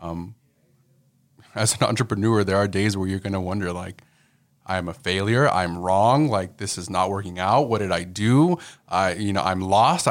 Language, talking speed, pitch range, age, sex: English, 200 wpm, 95-120 Hz, 30-49, male